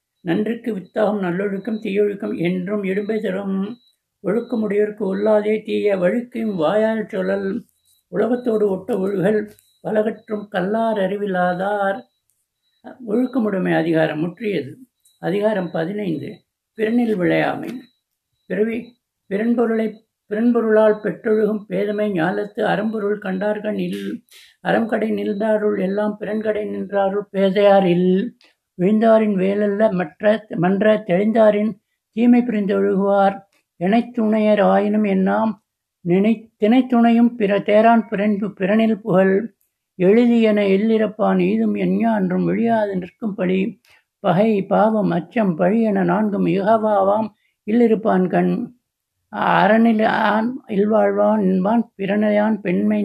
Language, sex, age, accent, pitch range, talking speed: Tamil, male, 60-79, native, 190-220 Hz, 85 wpm